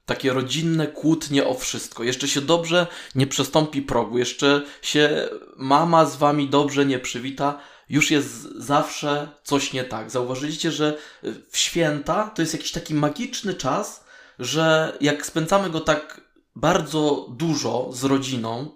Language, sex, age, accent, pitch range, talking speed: Polish, male, 20-39, native, 125-150 Hz, 140 wpm